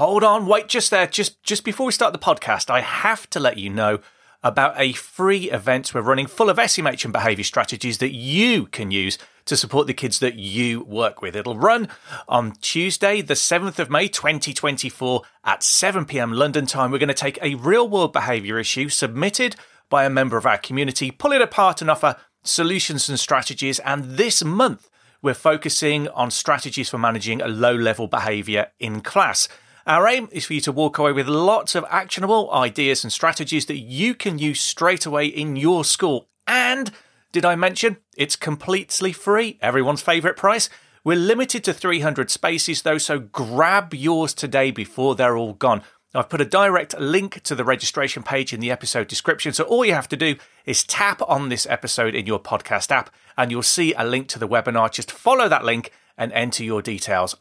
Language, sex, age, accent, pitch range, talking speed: English, male, 30-49, British, 125-180 Hz, 195 wpm